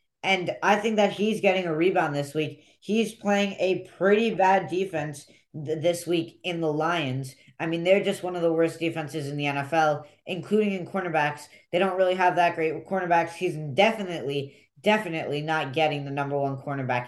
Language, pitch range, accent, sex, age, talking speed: English, 140-180 Hz, American, female, 10-29, 185 wpm